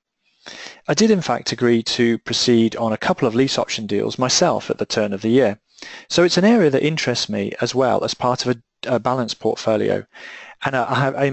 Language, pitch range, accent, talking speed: English, 115-160 Hz, British, 205 wpm